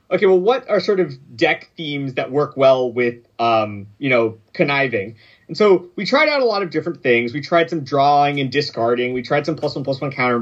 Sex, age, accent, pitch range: male, 30-49, American, 120-165 Hz